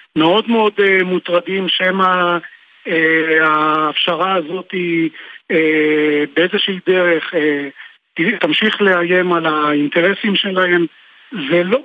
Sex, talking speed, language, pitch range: male, 90 wpm, Hebrew, 160-195 Hz